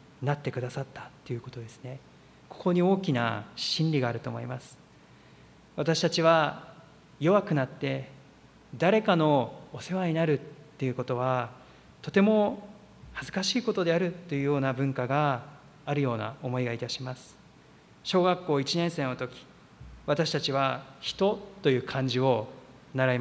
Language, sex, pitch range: Japanese, male, 130-180 Hz